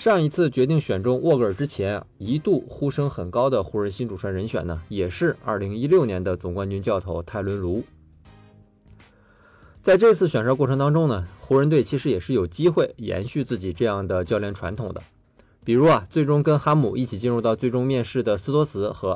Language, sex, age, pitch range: Chinese, male, 20-39, 100-130 Hz